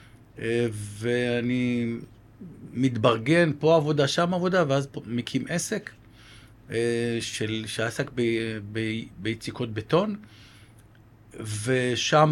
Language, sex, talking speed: Hebrew, male, 90 wpm